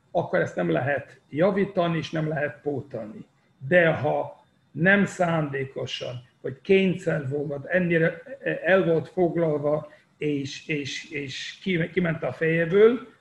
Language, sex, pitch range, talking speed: Hungarian, male, 150-195 Hz, 120 wpm